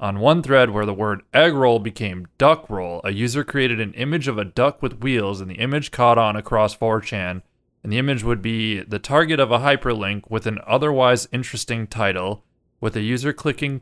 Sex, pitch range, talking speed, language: male, 105-125 Hz, 205 wpm, English